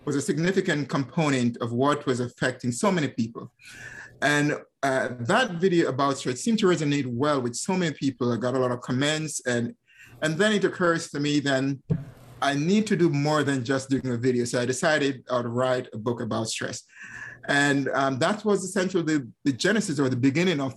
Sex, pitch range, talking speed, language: male, 125-160 Hz, 200 wpm, English